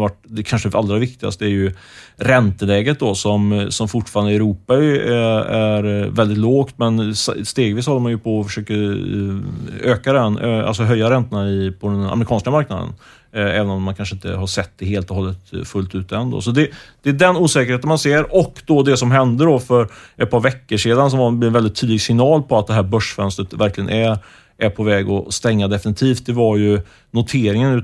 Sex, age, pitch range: male, 30-49, 100-125 Hz